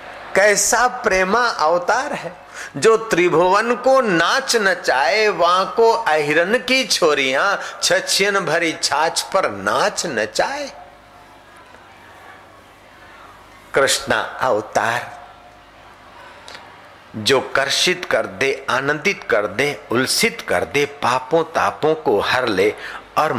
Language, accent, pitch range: Hindi, native, 120-180 Hz